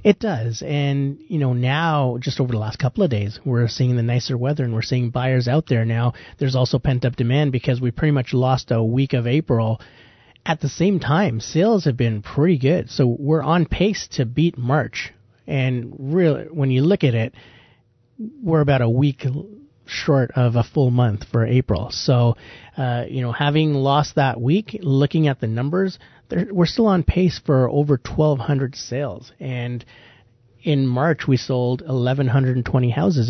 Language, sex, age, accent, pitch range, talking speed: English, male, 30-49, American, 120-145 Hz, 180 wpm